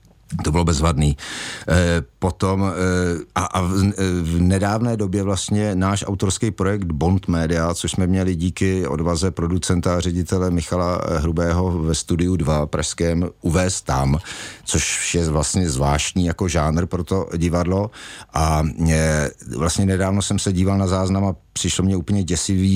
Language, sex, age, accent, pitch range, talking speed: Czech, male, 50-69, native, 85-95 Hz, 145 wpm